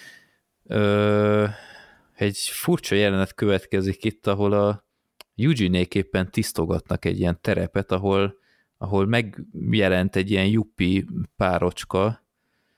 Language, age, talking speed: Hungarian, 20-39, 90 wpm